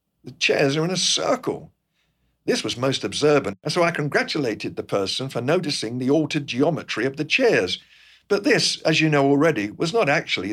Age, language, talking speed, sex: 50-69, English, 190 wpm, male